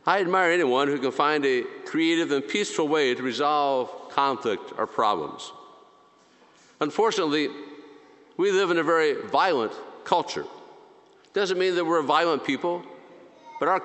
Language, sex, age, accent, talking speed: English, male, 50-69, American, 145 wpm